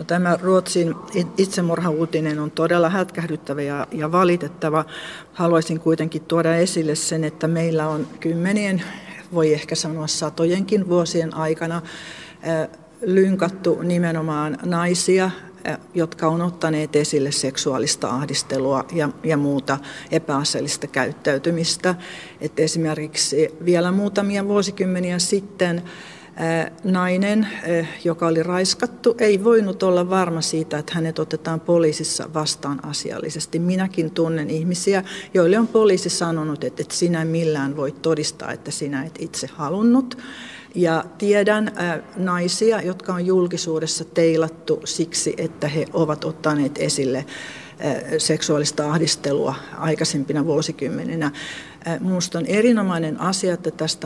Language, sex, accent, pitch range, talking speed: Finnish, female, native, 155-185 Hz, 110 wpm